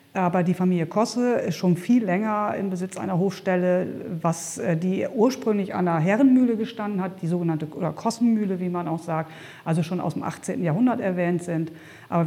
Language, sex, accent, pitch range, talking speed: German, female, German, 165-205 Hz, 175 wpm